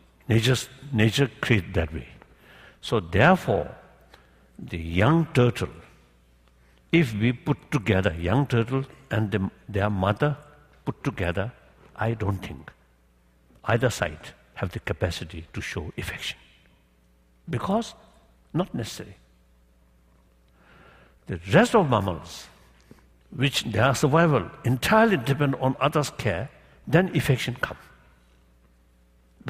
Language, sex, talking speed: English, male, 100 wpm